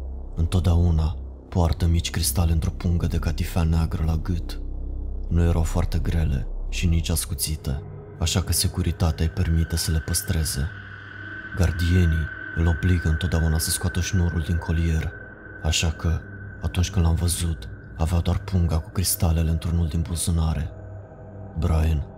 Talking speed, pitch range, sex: 135 wpm, 80-90 Hz, male